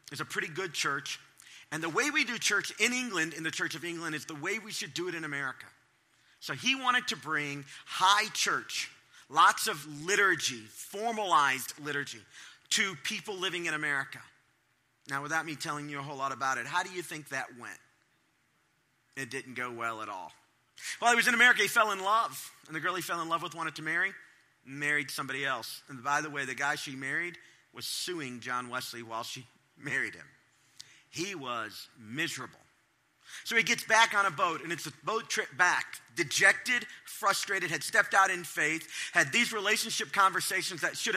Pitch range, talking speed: 145-205 Hz, 195 wpm